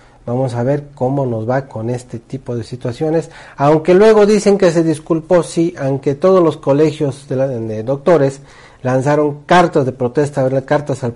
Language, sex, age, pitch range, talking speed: Spanish, male, 40-59, 120-155 Hz, 175 wpm